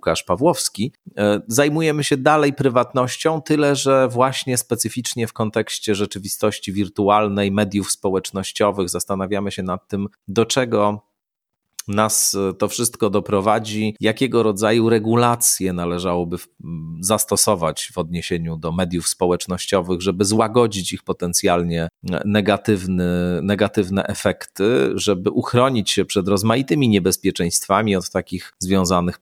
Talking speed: 105 wpm